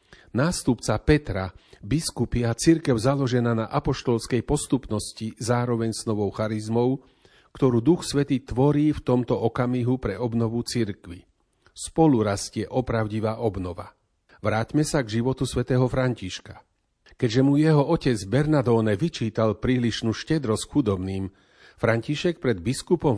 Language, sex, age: Slovak, male, 40-59